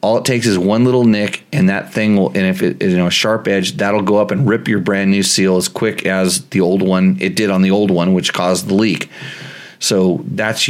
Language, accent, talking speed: English, American, 250 wpm